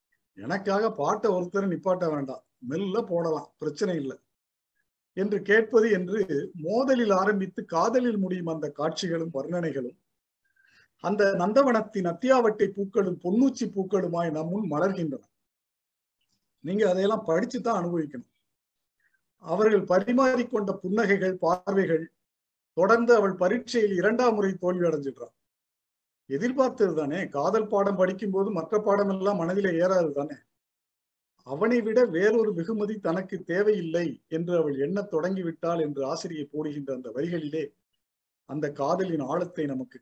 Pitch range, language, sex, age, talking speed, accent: 155-205 Hz, Tamil, male, 50-69, 105 wpm, native